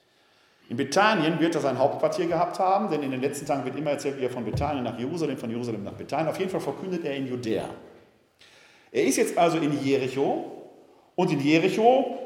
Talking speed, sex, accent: 205 wpm, male, German